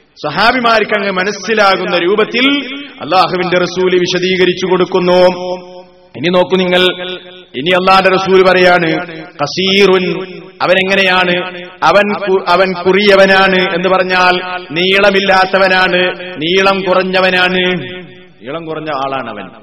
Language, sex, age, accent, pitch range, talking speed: Malayalam, male, 30-49, native, 185-240 Hz, 90 wpm